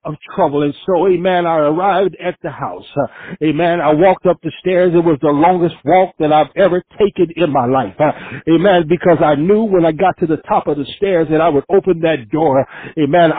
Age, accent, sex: 60-79, American, male